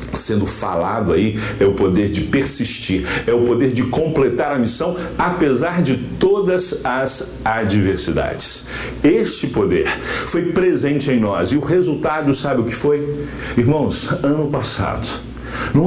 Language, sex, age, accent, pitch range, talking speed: Portuguese, male, 60-79, Brazilian, 125-170 Hz, 140 wpm